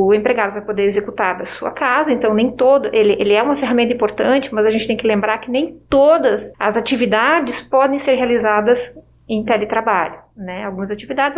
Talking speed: 190 wpm